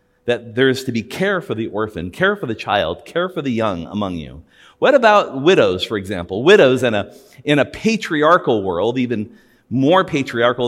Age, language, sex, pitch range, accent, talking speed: 40-59, English, male, 110-155 Hz, American, 190 wpm